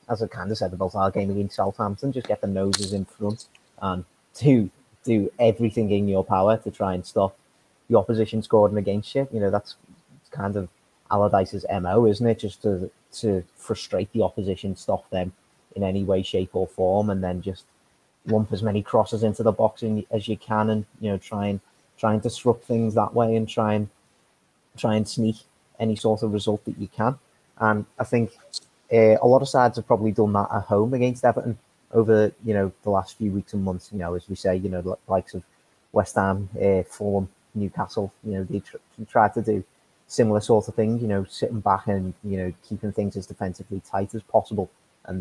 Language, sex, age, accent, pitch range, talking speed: English, male, 30-49, British, 100-110 Hz, 210 wpm